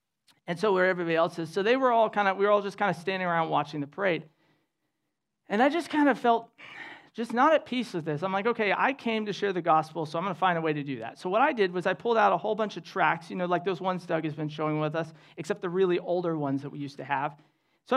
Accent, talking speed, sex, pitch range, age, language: American, 295 wpm, male, 155-205 Hz, 40-59, English